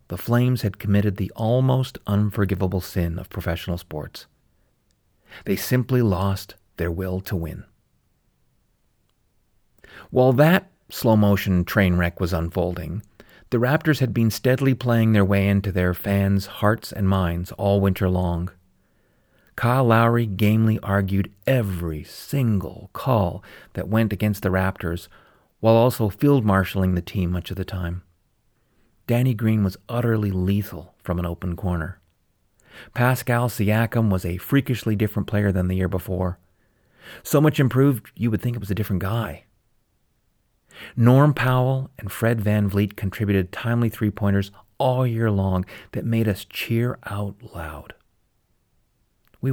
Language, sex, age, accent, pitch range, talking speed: English, male, 40-59, American, 95-115 Hz, 140 wpm